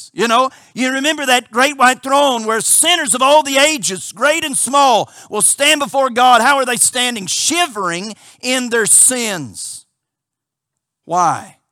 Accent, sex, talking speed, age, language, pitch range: American, male, 155 wpm, 50-69, English, 165-255 Hz